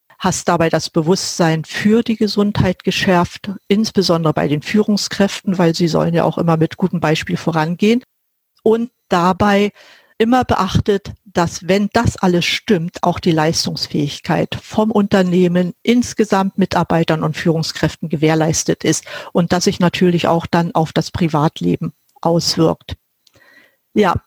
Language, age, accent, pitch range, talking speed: German, 50-69, German, 170-210 Hz, 130 wpm